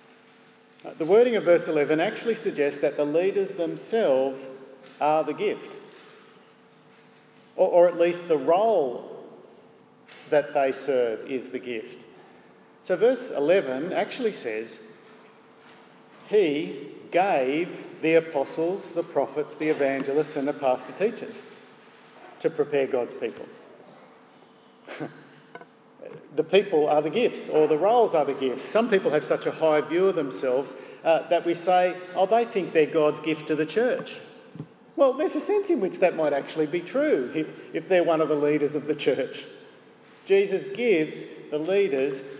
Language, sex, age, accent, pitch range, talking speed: English, male, 50-69, Australian, 150-240 Hz, 145 wpm